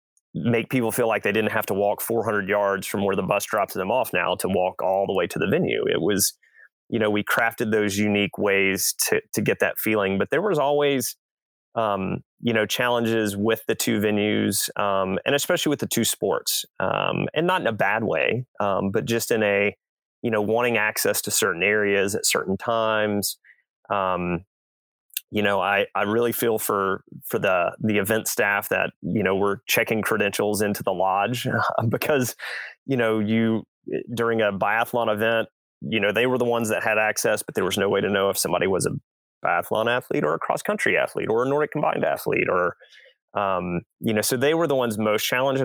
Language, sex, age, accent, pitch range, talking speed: English, male, 30-49, American, 100-115 Hz, 205 wpm